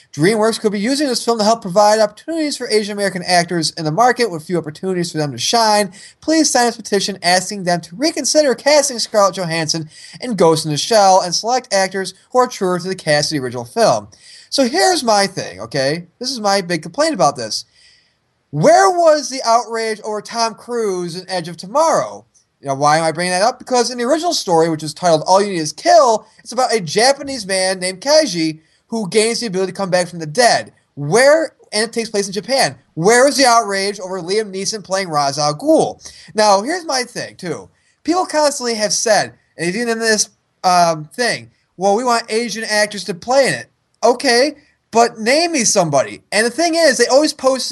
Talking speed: 205 wpm